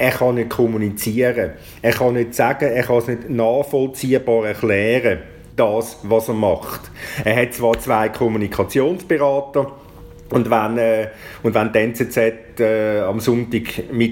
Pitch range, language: 110-125 Hz, German